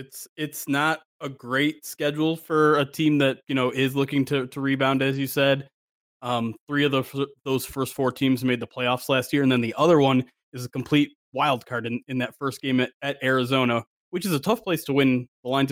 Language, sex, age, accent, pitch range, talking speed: English, male, 20-39, American, 120-145 Hz, 235 wpm